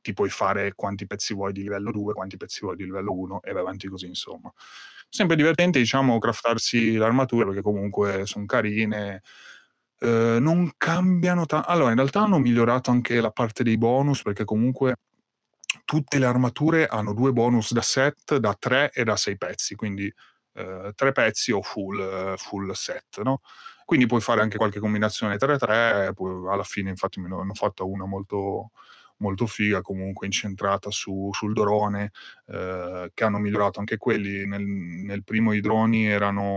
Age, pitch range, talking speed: 30-49, 95-115 Hz, 170 wpm